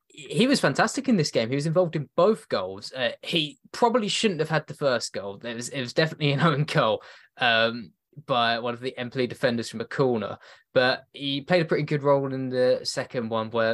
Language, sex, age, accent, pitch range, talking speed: English, male, 20-39, British, 130-180 Hz, 225 wpm